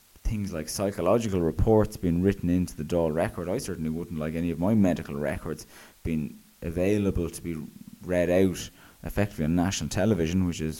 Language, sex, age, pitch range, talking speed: English, male, 20-39, 80-100 Hz, 165 wpm